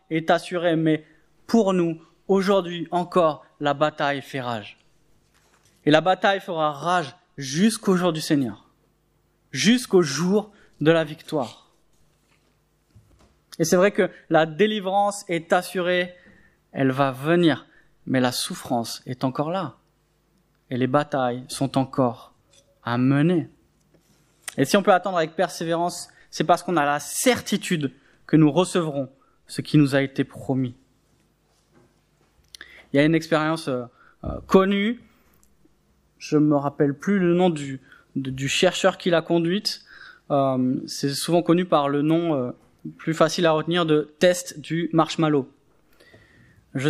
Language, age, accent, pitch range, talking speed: French, 20-39, French, 140-180 Hz, 135 wpm